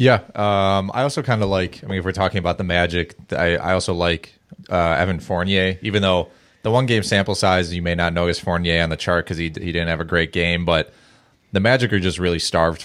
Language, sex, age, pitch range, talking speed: English, male, 20-39, 85-100 Hz, 245 wpm